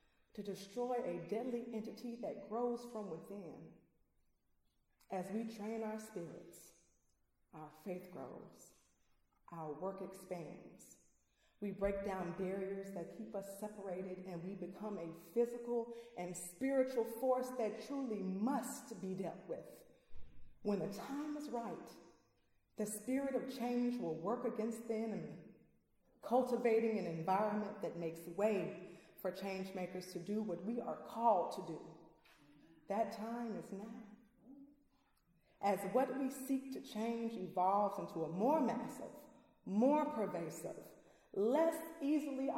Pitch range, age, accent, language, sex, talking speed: 190-250 Hz, 30-49, American, English, female, 130 wpm